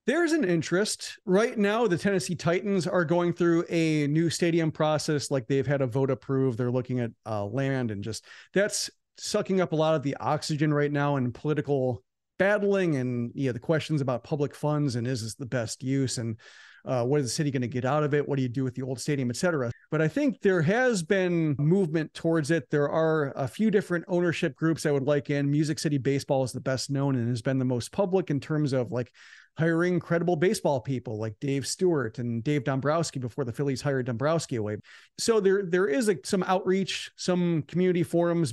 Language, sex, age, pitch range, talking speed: English, male, 40-59, 135-175 Hz, 215 wpm